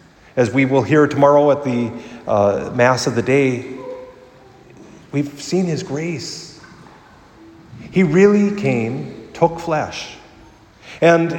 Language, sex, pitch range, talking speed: English, male, 110-145 Hz, 115 wpm